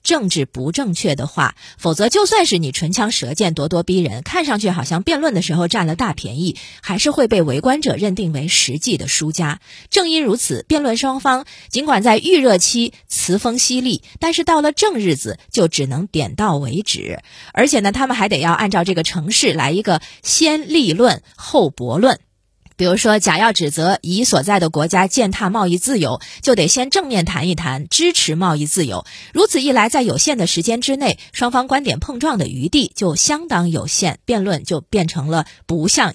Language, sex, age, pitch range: Chinese, female, 30-49, 170-265 Hz